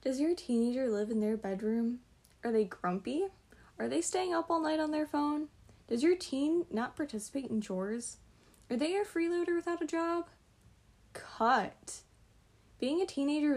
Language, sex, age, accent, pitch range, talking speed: English, female, 10-29, American, 215-305 Hz, 165 wpm